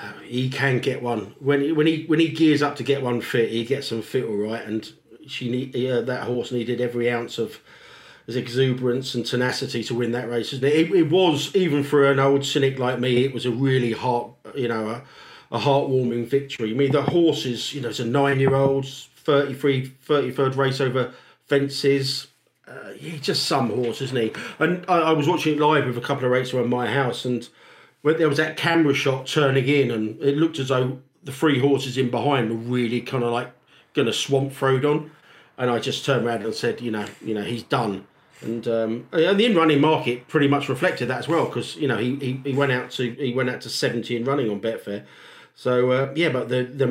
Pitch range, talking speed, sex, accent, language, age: 120-140 Hz, 225 wpm, male, British, English, 40-59